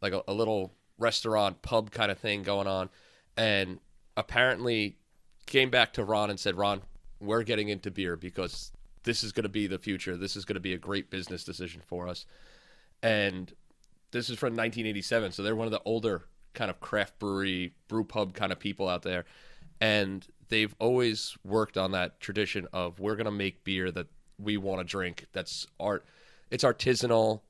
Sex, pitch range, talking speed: male, 95-115 Hz, 190 wpm